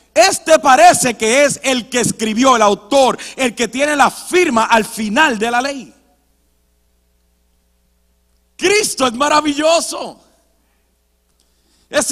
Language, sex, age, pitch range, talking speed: Spanish, male, 40-59, 195-280 Hz, 115 wpm